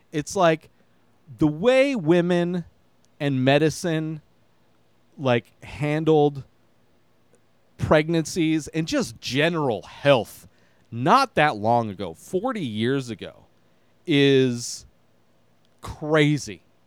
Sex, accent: male, American